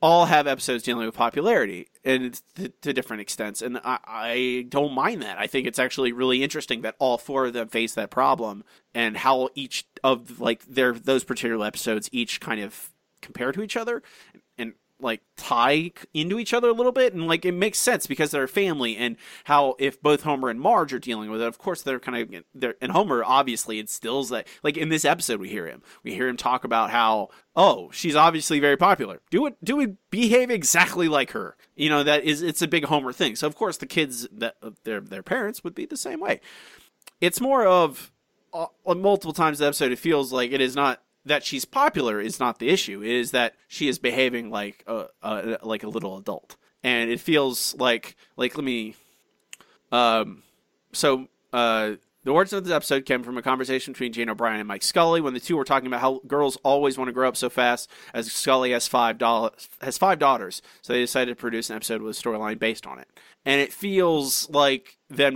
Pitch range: 120-165 Hz